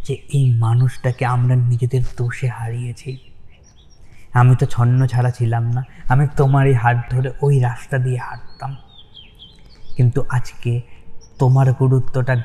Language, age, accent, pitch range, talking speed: Bengali, 20-39, native, 120-135 Hz, 120 wpm